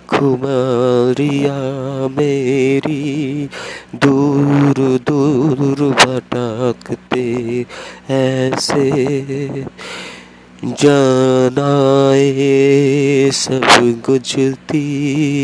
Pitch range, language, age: 120-145 Hz, Bengali, 30-49